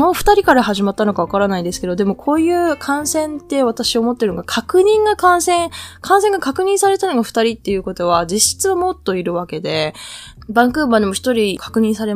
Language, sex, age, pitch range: Japanese, female, 20-39, 185-280 Hz